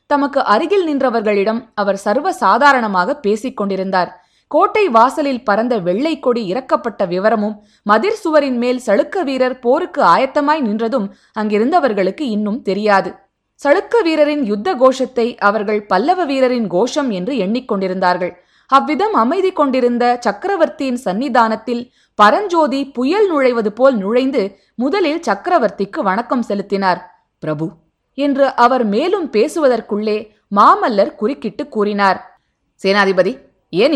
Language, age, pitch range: Tamil, 20-39, 195-275 Hz